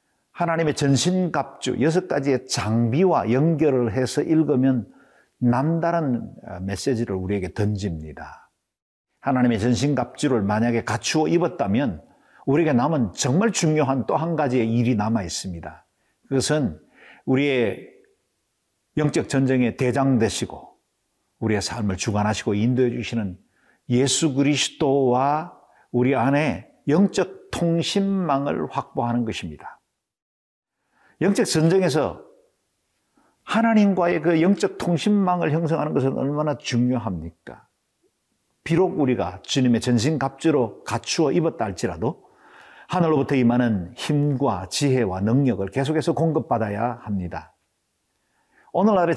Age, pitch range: 50-69, 115-160 Hz